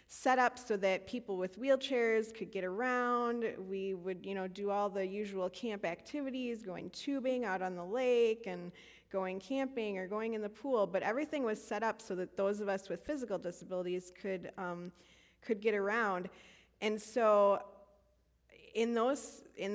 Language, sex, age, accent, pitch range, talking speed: English, female, 20-39, American, 180-230 Hz, 175 wpm